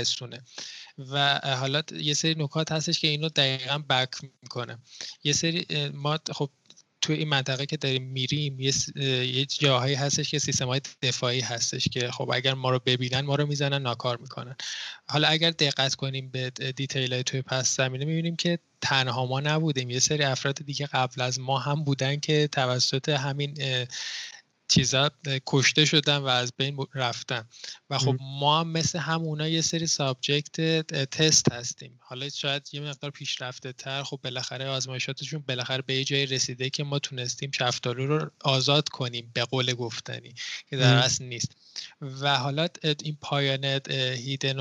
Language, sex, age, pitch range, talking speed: Persian, male, 20-39, 130-150 Hz, 160 wpm